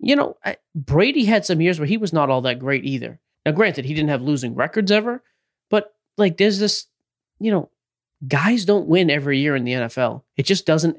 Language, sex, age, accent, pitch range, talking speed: English, male, 30-49, American, 140-195 Hz, 215 wpm